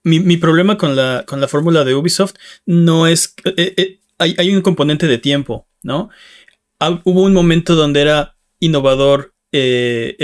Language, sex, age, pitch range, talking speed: Spanish, male, 30-49, 140-170 Hz, 165 wpm